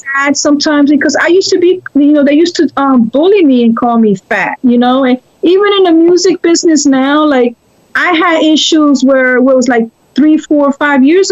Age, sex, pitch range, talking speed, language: 40-59, female, 245-310 Hz, 210 wpm, English